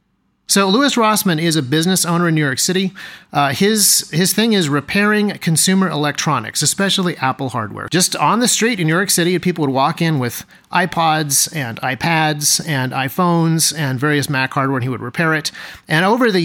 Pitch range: 145-185 Hz